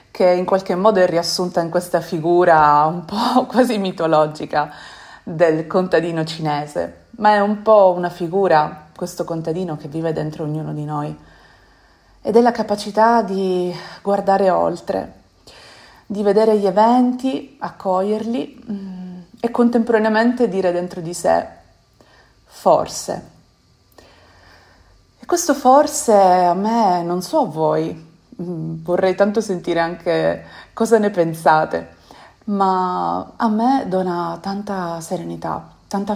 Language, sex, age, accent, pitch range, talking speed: Italian, female, 30-49, native, 165-210 Hz, 120 wpm